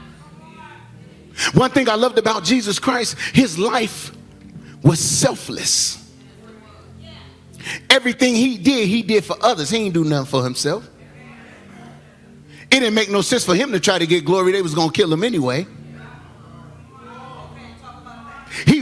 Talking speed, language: 140 wpm, English